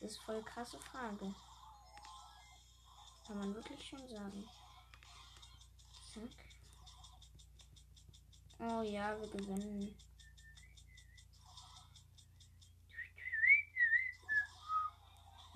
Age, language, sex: 20-39, English, female